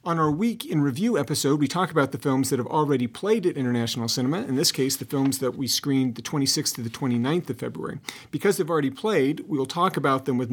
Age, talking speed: 40-59, 245 wpm